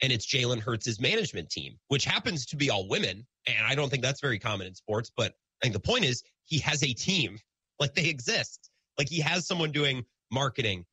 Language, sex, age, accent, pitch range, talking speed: English, male, 30-49, American, 115-165 Hz, 220 wpm